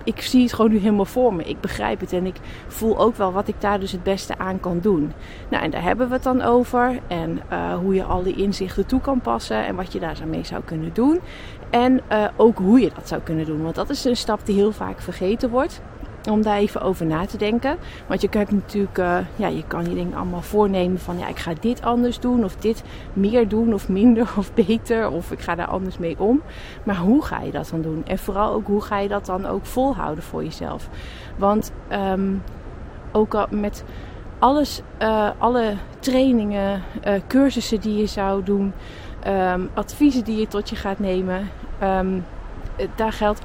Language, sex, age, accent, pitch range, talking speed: Dutch, female, 30-49, Dutch, 185-235 Hz, 215 wpm